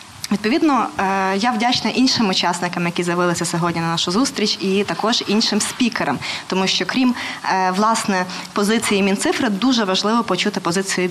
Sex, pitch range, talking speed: female, 185-220 Hz, 135 wpm